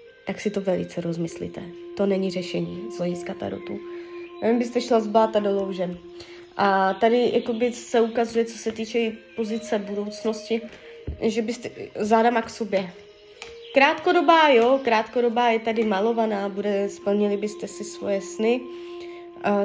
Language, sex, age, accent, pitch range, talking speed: Czech, female, 20-39, native, 200-245 Hz, 145 wpm